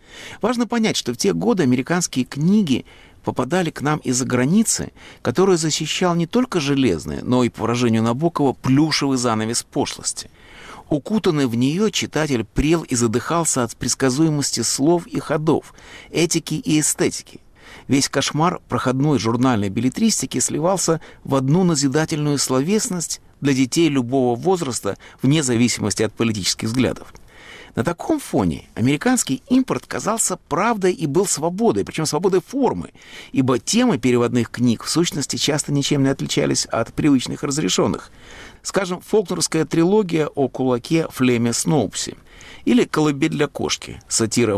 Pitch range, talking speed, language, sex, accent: 125-175 Hz, 130 wpm, Russian, male, native